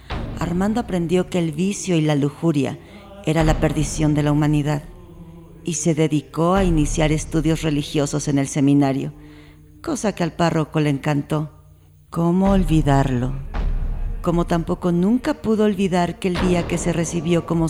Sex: female